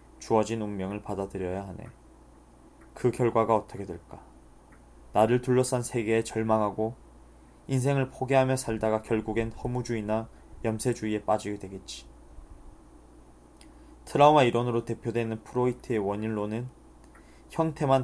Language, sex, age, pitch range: Korean, male, 20-39, 105-125 Hz